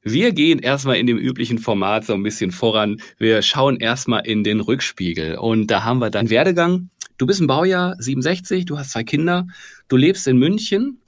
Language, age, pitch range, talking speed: German, 40-59, 115-155 Hz, 195 wpm